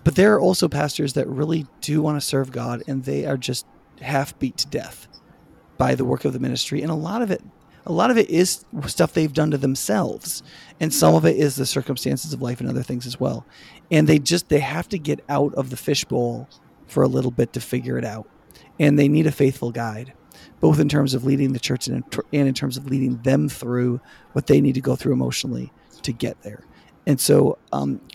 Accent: American